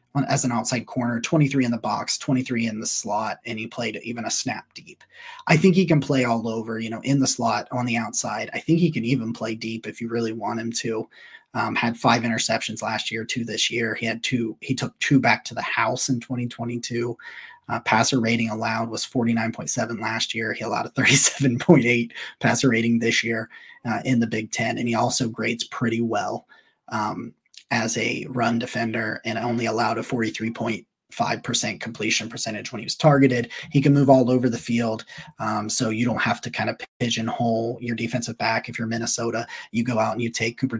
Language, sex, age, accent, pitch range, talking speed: English, male, 30-49, American, 115-125 Hz, 205 wpm